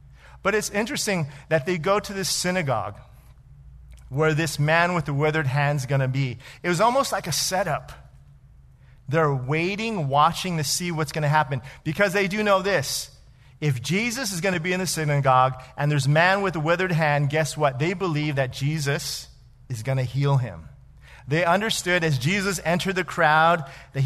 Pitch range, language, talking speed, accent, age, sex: 130-175 Hz, English, 190 wpm, American, 40-59, male